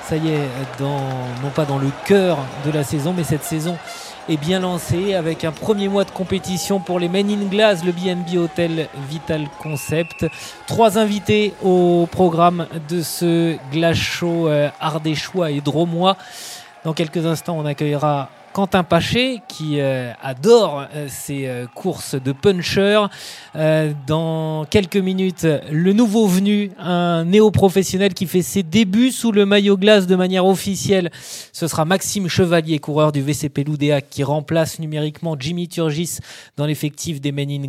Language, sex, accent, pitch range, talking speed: French, male, French, 150-190 Hz, 155 wpm